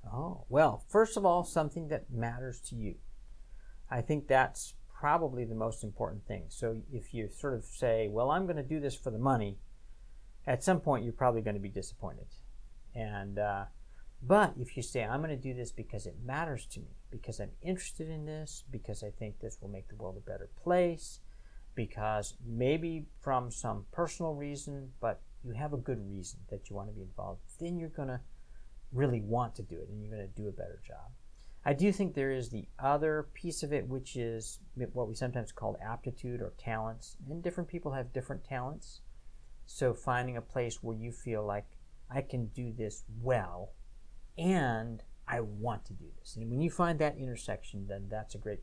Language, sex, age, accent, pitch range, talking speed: English, male, 50-69, American, 105-140 Hz, 200 wpm